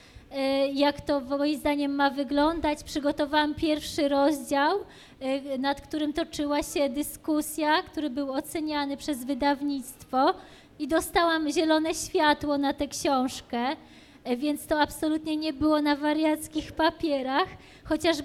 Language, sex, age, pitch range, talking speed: Polish, female, 20-39, 285-330 Hz, 115 wpm